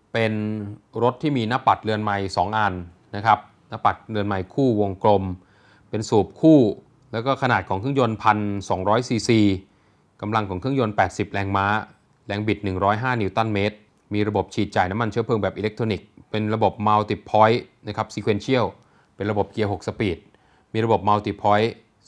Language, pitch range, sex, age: Thai, 100-120 Hz, male, 20-39